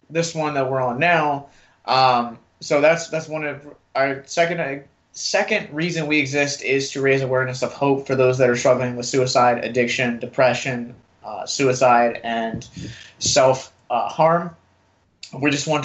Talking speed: 165 wpm